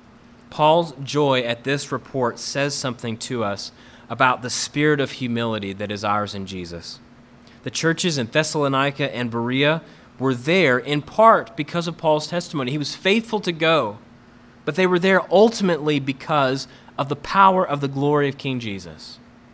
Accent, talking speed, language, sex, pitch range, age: American, 165 wpm, English, male, 120-150 Hz, 30-49